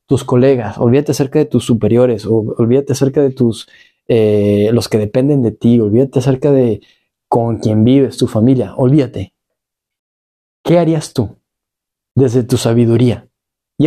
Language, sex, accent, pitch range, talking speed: Spanish, male, Mexican, 115-135 Hz, 145 wpm